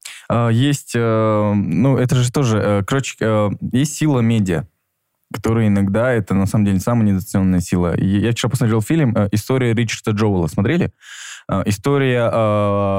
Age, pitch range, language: 20-39, 100-125 Hz, Russian